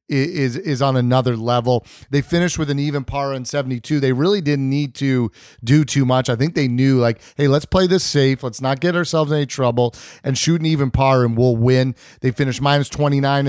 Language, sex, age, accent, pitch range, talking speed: English, male, 30-49, American, 125-150 Hz, 220 wpm